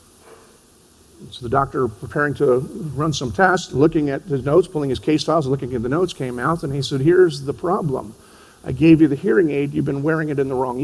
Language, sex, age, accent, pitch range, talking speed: English, male, 50-69, American, 150-215 Hz, 225 wpm